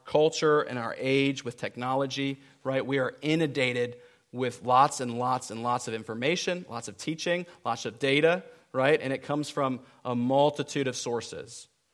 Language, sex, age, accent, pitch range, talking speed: English, male, 40-59, American, 125-150 Hz, 165 wpm